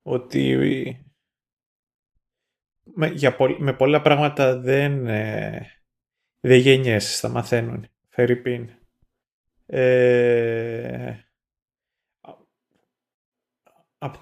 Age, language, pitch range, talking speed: 30-49, Greek, 115-140 Hz, 65 wpm